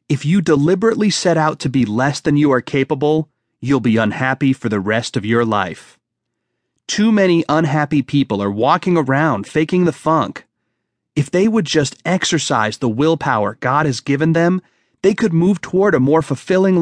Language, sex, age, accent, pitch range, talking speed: English, male, 30-49, American, 130-180 Hz, 175 wpm